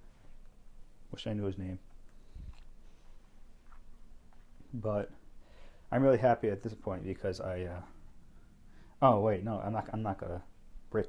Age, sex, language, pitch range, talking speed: 30-49, male, English, 95-110 Hz, 130 wpm